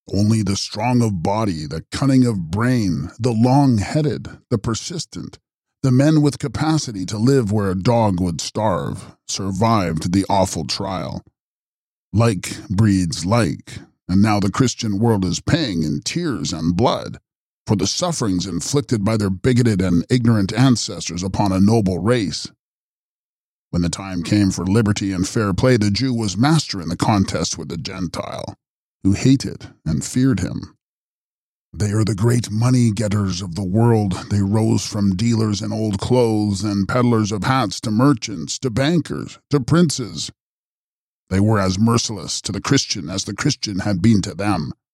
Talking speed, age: 160 wpm, 40-59